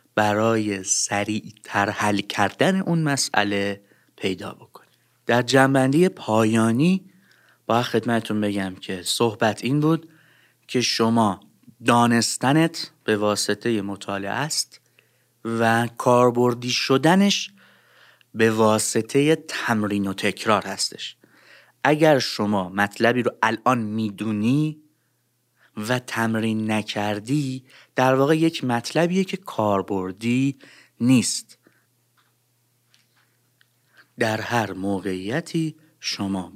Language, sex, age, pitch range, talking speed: Persian, male, 30-49, 105-135 Hz, 90 wpm